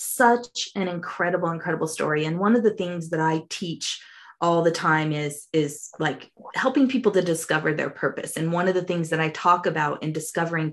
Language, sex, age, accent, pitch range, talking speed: English, female, 20-39, American, 160-185 Hz, 200 wpm